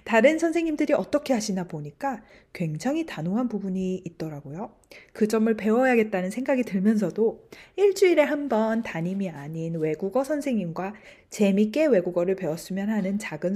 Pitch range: 185-275 Hz